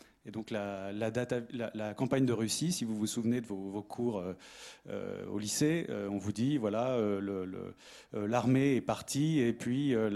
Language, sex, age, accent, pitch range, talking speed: French, male, 30-49, French, 110-135 Hz, 190 wpm